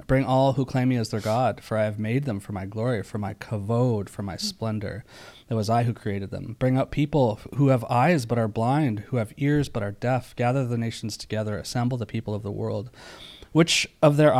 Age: 30-49